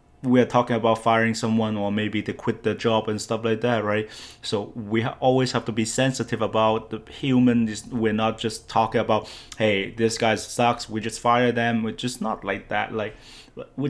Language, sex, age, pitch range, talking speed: English, male, 20-39, 110-120 Hz, 205 wpm